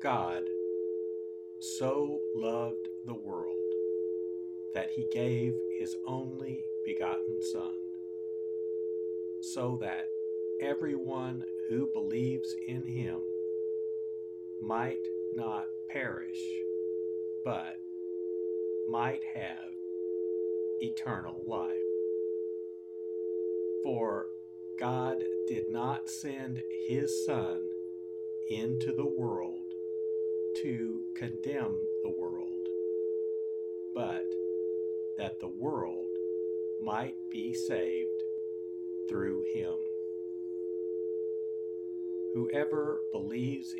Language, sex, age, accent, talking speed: English, male, 60-79, American, 70 wpm